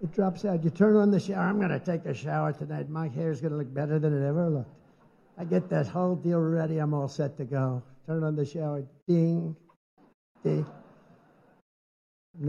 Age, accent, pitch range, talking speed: 60-79, American, 150-185 Hz, 205 wpm